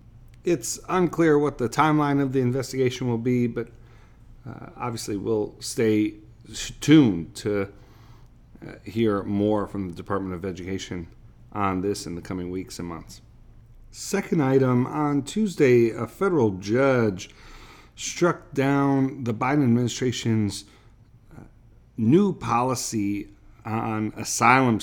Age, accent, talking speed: 40-59, American, 120 wpm